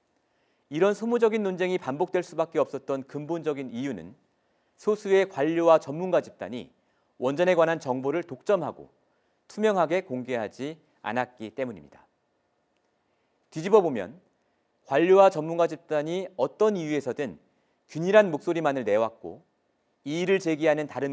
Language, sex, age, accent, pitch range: Korean, male, 40-59, native, 140-190 Hz